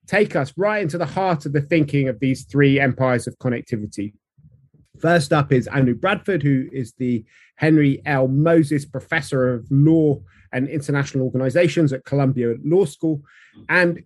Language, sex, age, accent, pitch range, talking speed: English, male, 30-49, British, 135-160 Hz, 160 wpm